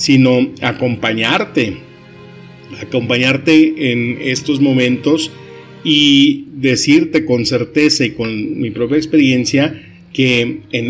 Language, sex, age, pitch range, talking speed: Spanish, male, 50-69, 115-140 Hz, 95 wpm